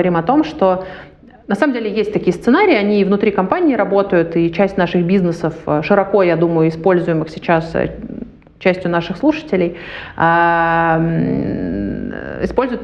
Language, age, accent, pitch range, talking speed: Russian, 30-49, native, 165-210 Hz, 120 wpm